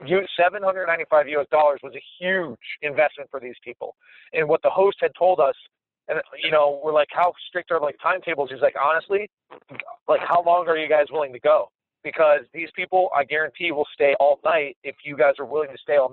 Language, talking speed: English, 225 wpm